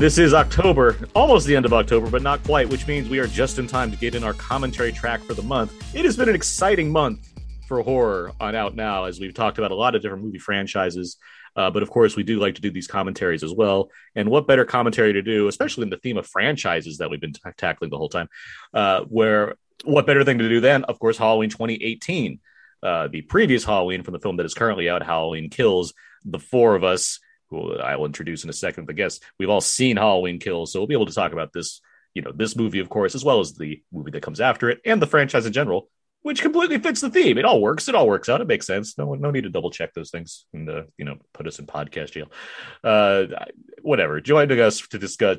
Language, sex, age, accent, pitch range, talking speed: English, male, 30-49, American, 95-140 Hz, 250 wpm